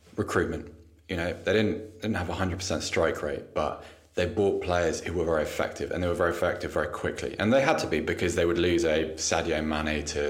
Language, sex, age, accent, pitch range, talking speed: English, male, 20-39, British, 85-110 Hz, 225 wpm